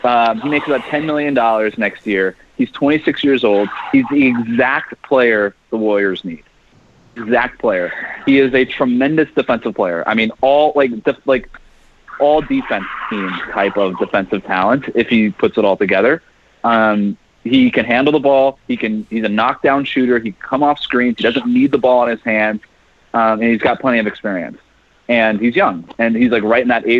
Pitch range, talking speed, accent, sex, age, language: 115-150 Hz, 195 wpm, American, male, 30-49, English